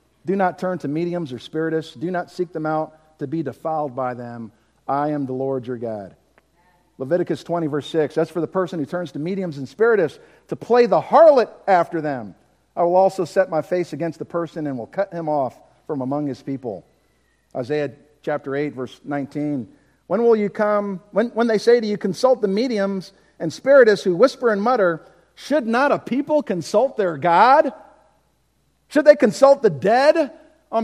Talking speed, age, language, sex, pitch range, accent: 190 wpm, 50-69, English, male, 150-205 Hz, American